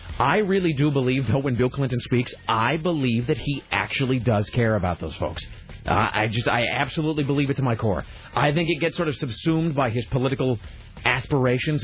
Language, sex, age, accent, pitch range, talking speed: English, male, 40-59, American, 110-160 Hz, 205 wpm